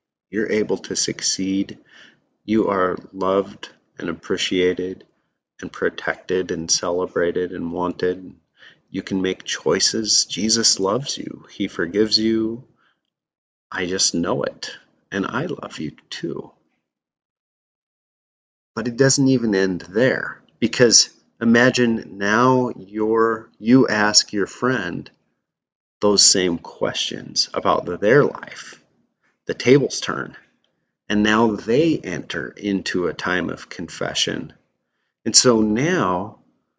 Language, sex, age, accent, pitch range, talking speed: English, male, 30-49, American, 90-110 Hz, 115 wpm